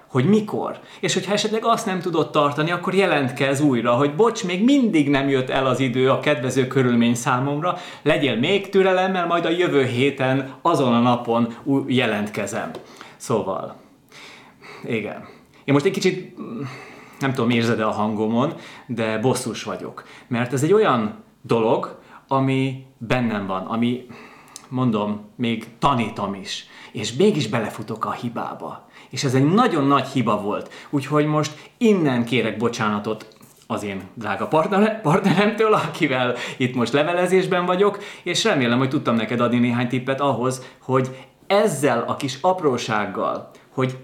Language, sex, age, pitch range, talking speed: Hungarian, male, 30-49, 120-165 Hz, 140 wpm